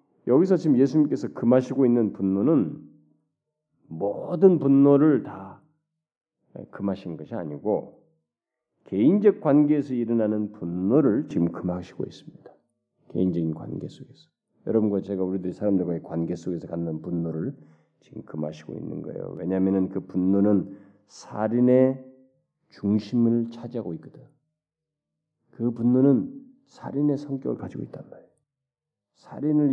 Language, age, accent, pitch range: Korean, 40-59, native, 95-145 Hz